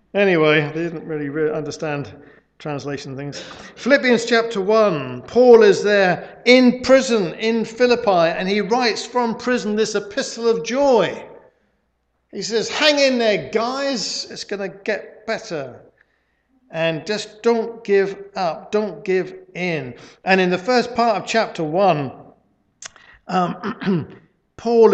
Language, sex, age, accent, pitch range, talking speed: English, male, 50-69, British, 175-230 Hz, 130 wpm